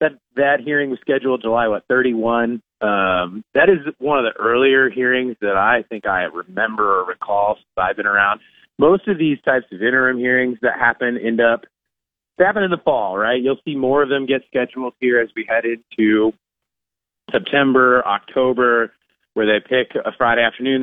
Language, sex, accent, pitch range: English, male, American, 110-130 Hz